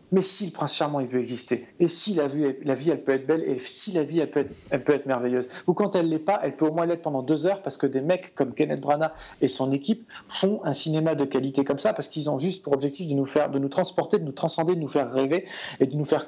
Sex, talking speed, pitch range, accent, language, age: male, 300 wpm, 140-175 Hz, French, French, 40-59